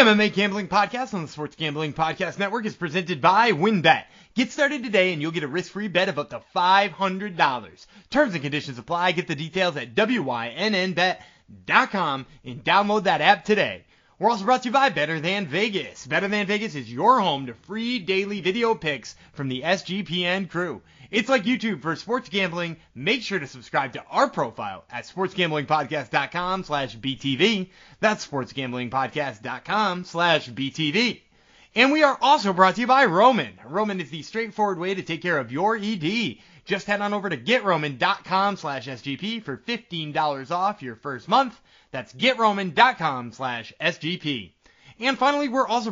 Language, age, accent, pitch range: English, 30-49, American, 155-215 Hz